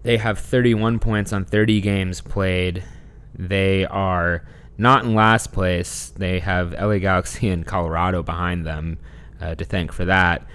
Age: 20-39